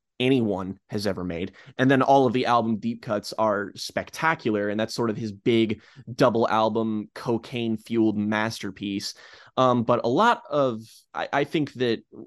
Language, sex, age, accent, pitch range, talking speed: English, male, 20-39, American, 105-130 Hz, 165 wpm